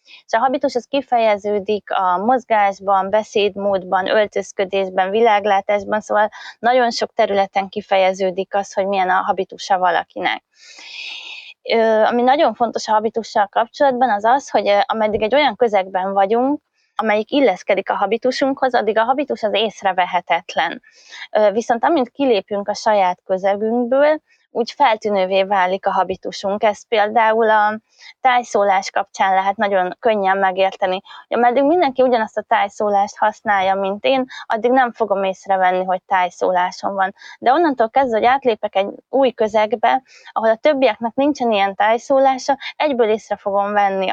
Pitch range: 195-245 Hz